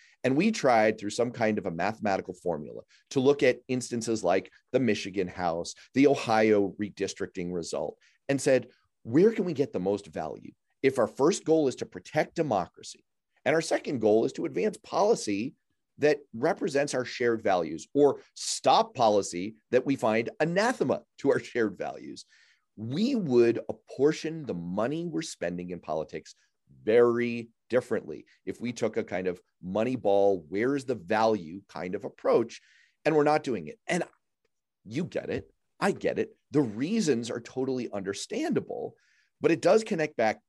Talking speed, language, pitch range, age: 165 wpm, English, 105-155 Hz, 30-49